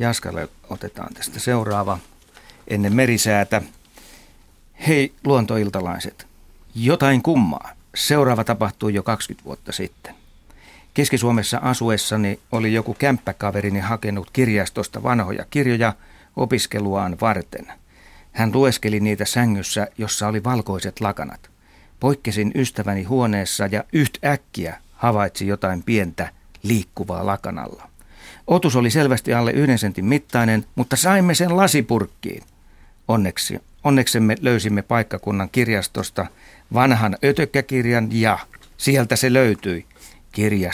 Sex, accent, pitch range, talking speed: male, native, 100-125 Hz, 100 wpm